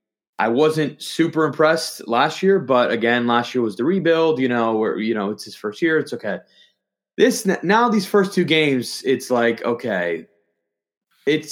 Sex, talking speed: male, 175 wpm